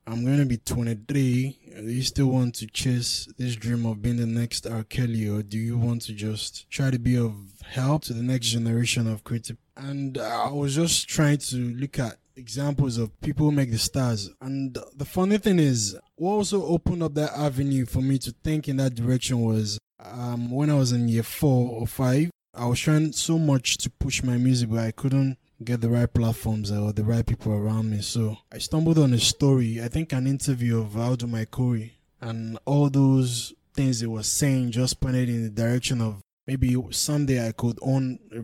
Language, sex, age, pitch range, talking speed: English, male, 20-39, 115-140 Hz, 210 wpm